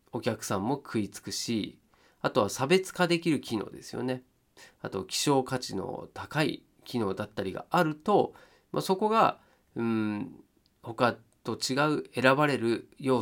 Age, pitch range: 40-59, 105-160 Hz